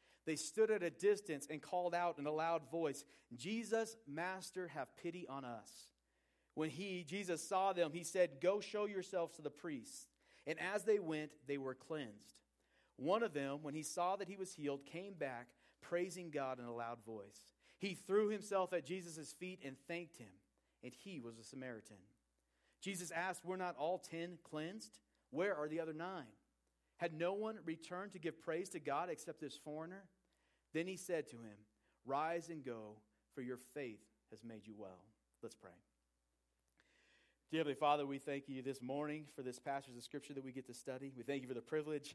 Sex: male